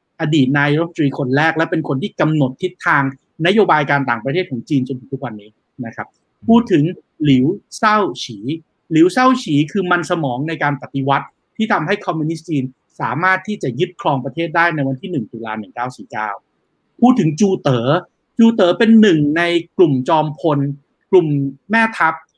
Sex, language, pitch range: male, Thai, 140-190 Hz